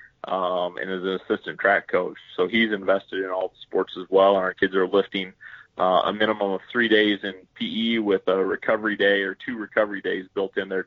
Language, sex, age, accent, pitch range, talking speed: English, male, 30-49, American, 95-110 Hz, 220 wpm